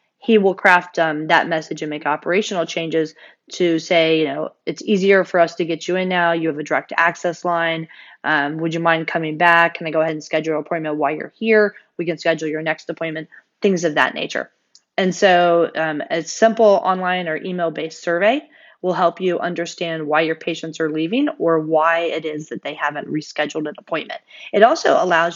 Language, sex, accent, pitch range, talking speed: English, female, American, 160-185 Hz, 210 wpm